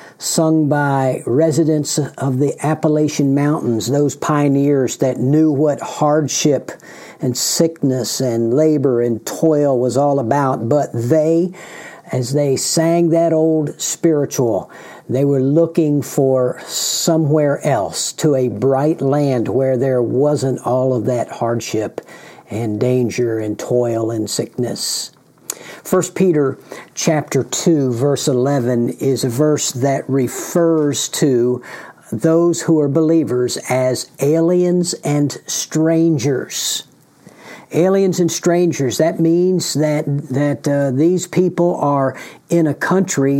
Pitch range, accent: 130-160 Hz, American